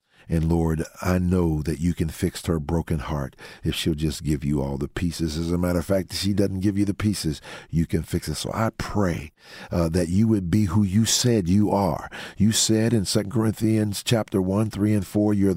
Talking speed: 225 wpm